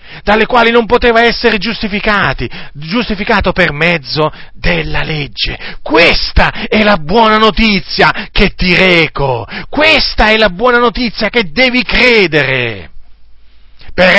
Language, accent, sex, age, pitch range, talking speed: Italian, native, male, 40-59, 170-235 Hz, 120 wpm